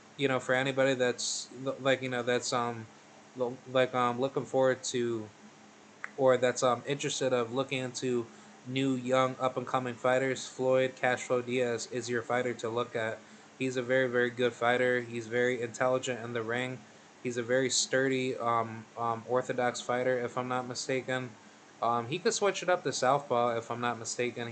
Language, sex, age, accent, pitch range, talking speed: English, male, 20-39, American, 120-135 Hz, 180 wpm